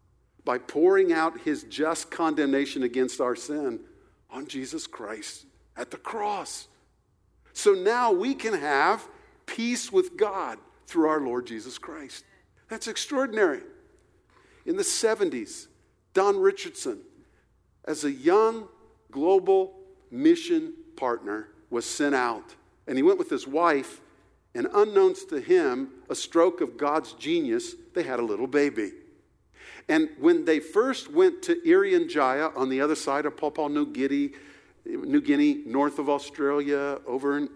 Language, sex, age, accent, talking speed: English, male, 50-69, American, 140 wpm